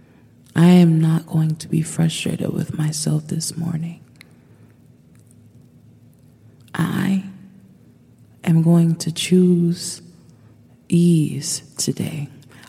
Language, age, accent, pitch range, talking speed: English, 30-49, American, 130-170 Hz, 85 wpm